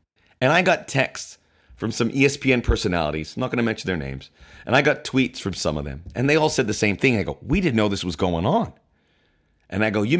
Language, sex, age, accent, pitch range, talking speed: English, male, 30-49, American, 90-145 Hz, 255 wpm